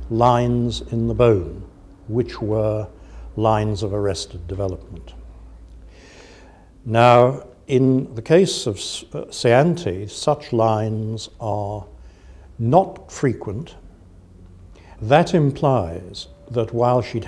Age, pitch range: 60-79, 90-120 Hz